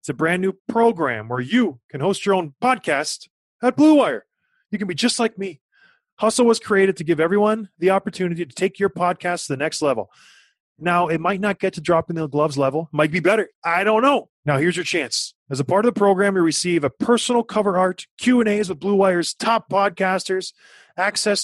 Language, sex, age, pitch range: English, male, 30-49, 170-225 Hz